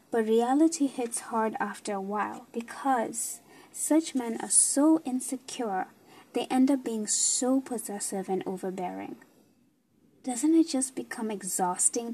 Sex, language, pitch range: female, English, 210-270 Hz